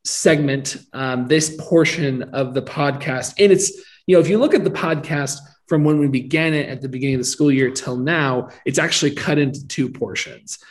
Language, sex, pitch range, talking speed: English, male, 130-155 Hz, 205 wpm